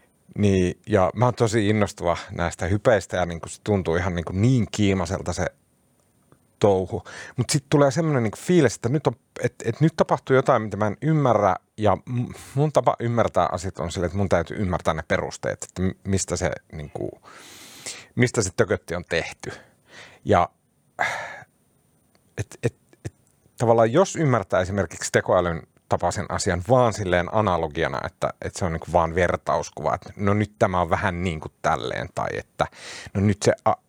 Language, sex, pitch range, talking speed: Finnish, male, 90-120 Hz, 170 wpm